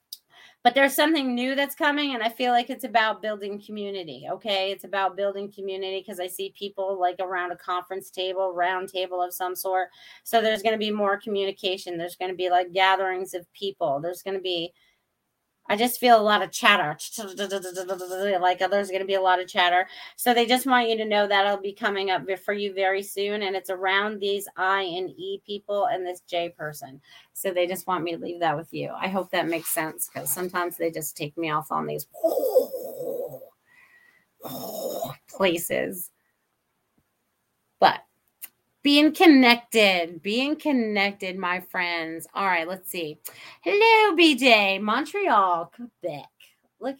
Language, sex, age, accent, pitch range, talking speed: English, female, 30-49, American, 185-255 Hz, 175 wpm